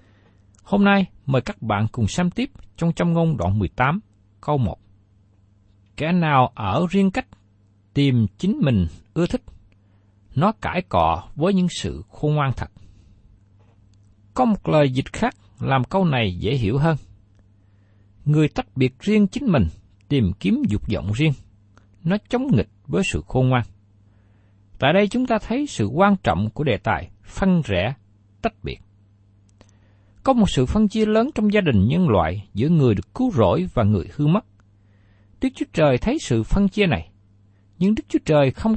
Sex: male